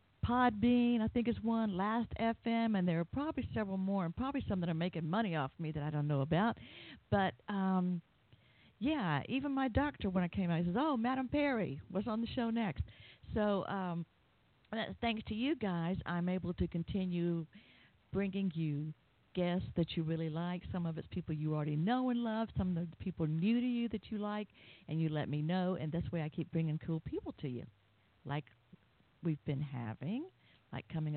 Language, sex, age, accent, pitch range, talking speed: English, female, 50-69, American, 160-220 Hz, 200 wpm